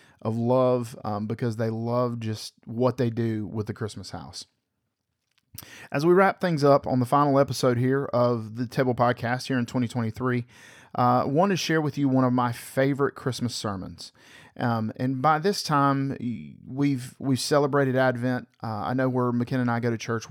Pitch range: 115-135 Hz